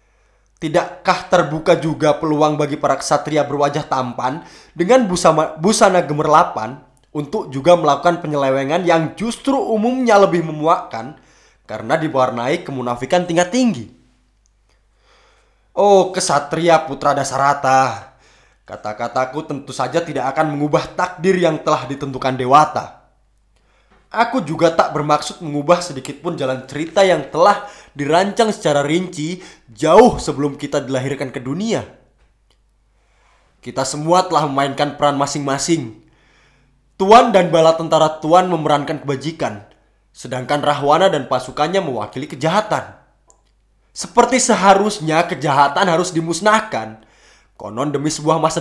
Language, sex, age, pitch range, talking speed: Indonesian, male, 20-39, 140-180 Hz, 110 wpm